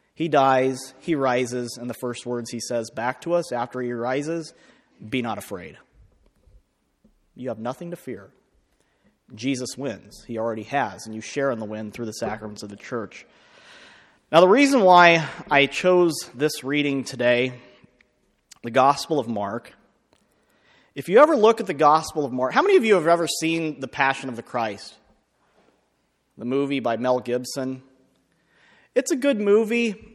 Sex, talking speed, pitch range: male, 165 wpm, 130-195 Hz